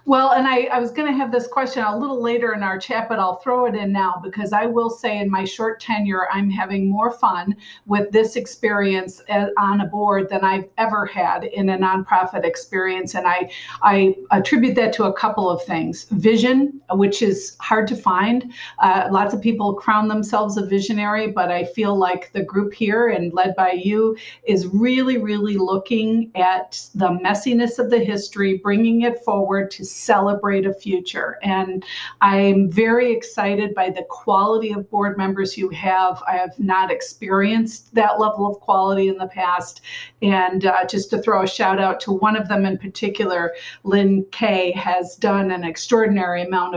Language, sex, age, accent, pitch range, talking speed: English, female, 50-69, American, 190-225 Hz, 185 wpm